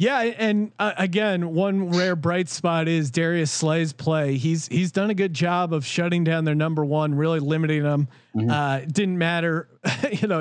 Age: 30-49